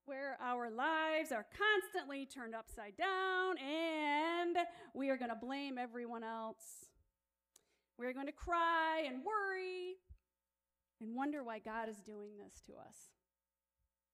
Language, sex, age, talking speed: English, female, 40-59, 135 wpm